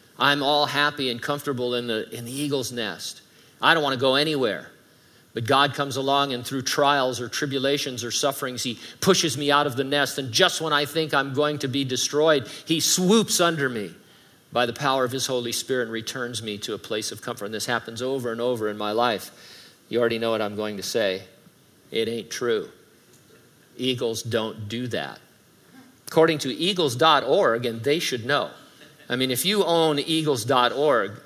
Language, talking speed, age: English, 190 wpm, 50-69